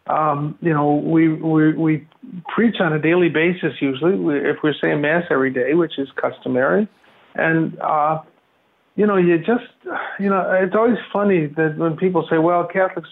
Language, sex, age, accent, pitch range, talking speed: English, male, 50-69, American, 160-210 Hz, 180 wpm